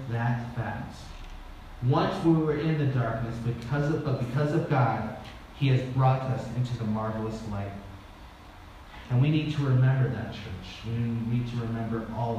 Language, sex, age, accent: English, male, 30-49, American